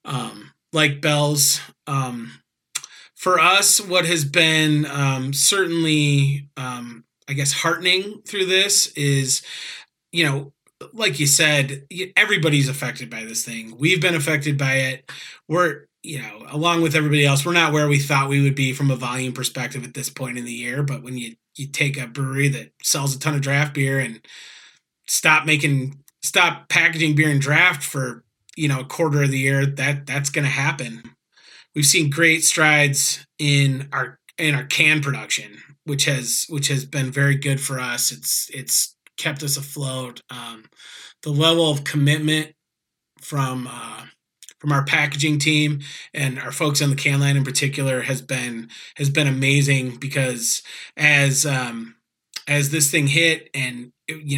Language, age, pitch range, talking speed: English, 30-49, 135-155 Hz, 165 wpm